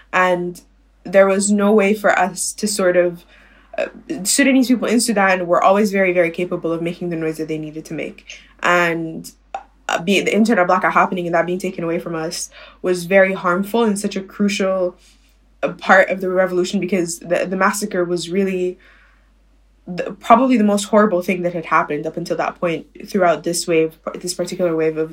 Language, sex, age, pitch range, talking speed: English, female, 20-39, 175-205 Hz, 190 wpm